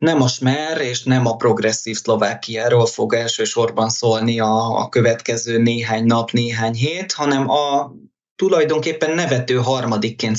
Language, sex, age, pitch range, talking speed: Hungarian, male, 20-39, 115-145 Hz, 125 wpm